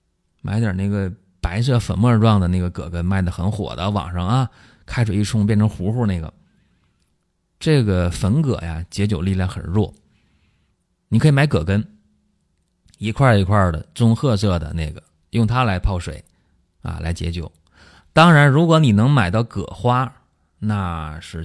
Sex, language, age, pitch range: male, Chinese, 30-49, 90-115 Hz